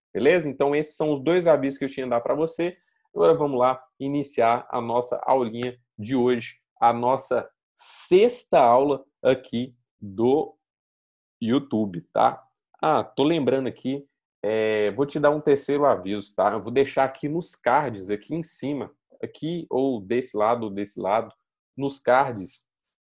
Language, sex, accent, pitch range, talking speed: Portuguese, male, Brazilian, 115-145 Hz, 160 wpm